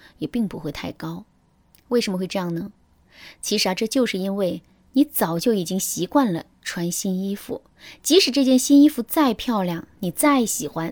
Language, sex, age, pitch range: Chinese, female, 20-39, 175-255 Hz